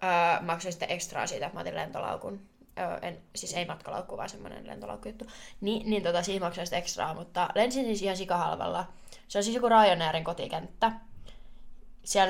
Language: Finnish